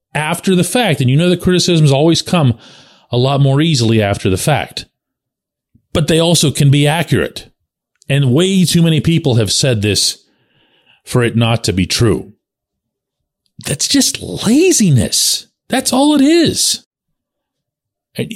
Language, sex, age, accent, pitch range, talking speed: English, male, 40-59, American, 115-175 Hz, 145 wpm